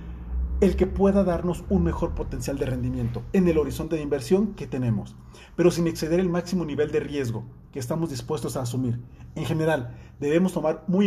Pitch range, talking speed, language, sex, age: 145-190 Hz, 185 wpm, Spanish, male, 40-59